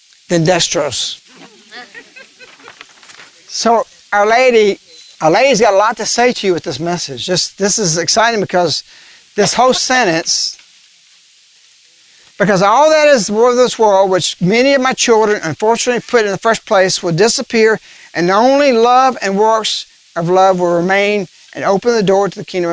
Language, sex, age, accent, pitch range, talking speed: English, male, 60-79, American, 180-255 Hz, 160 wpm